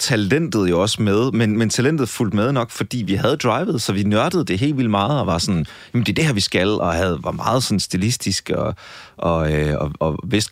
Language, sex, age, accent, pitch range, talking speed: Danish, male, 30-49, native, 85-105 Hz, 245 wpm